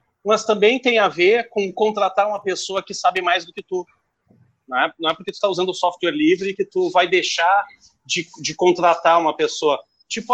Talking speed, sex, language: 205 wpm, male, Portuguese